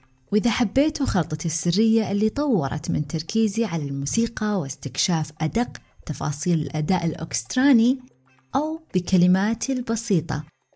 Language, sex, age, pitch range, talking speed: Arabic, female, 20-39, 160-230 Hz, 100 wpm